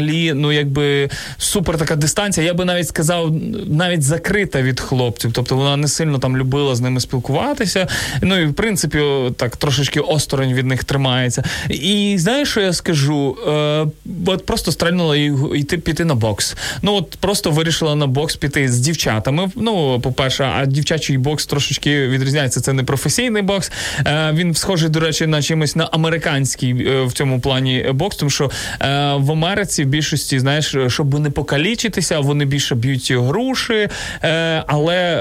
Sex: male